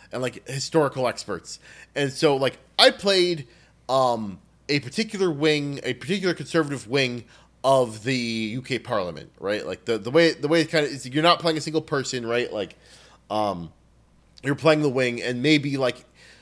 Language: English